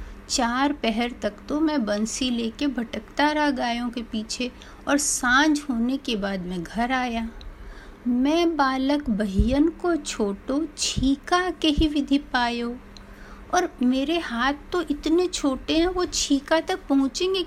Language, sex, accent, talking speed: Hindi, female, native, 140 wpm